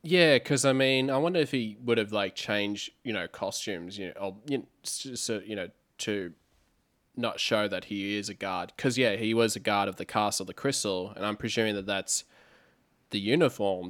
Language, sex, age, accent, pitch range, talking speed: English, male, 20-39, Australian, 100-120 Hz, 190 wpm